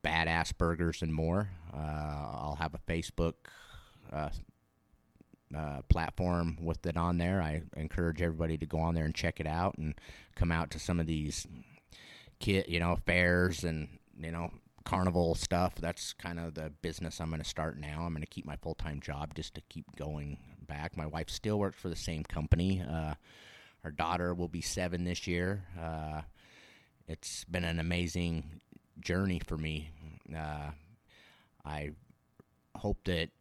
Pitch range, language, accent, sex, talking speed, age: 80-90 Hz, English, American, male, 170 wpm, 30-49